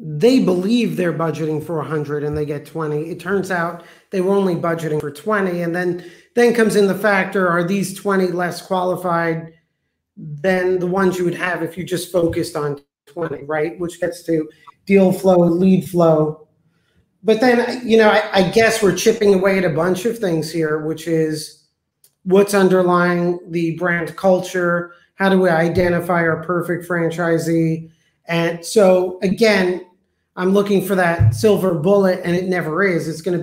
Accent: American